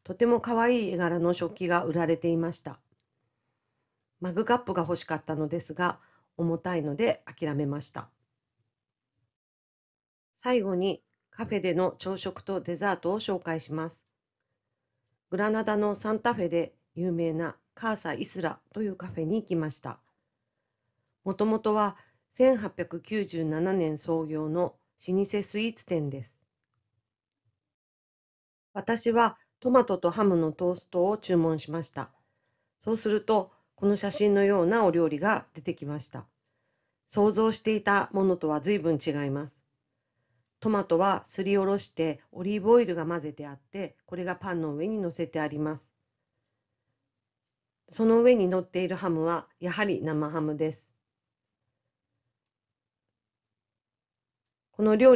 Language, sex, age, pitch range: Japanese, female, 40-59, 135-195 Hz